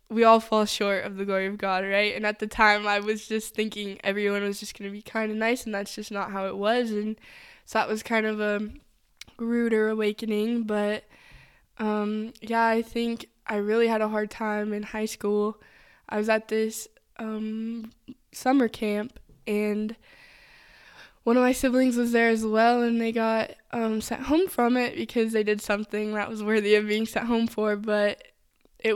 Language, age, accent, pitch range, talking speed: English, 10-29, American, 210-225 Hz, 195 wpm